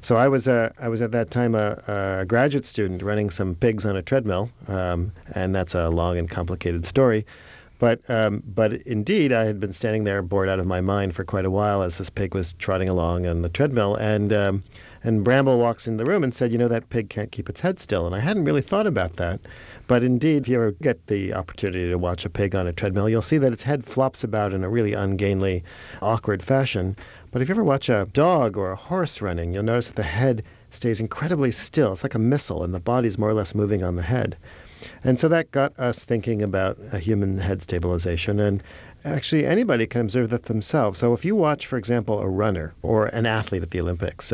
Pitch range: 95-120 Hz